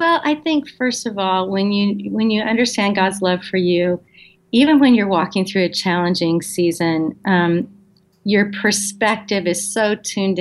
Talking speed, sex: 165 wpm, female